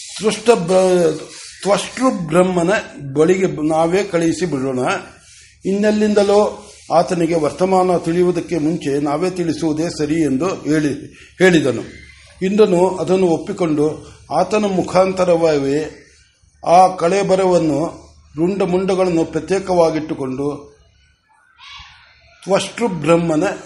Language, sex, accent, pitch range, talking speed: Kannada, male, native, 155-185 Hz, 60 wpm